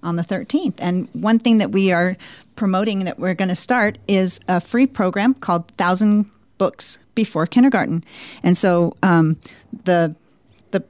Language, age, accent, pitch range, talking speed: English, 40-59, American, 180-235 Hz, 160 wpm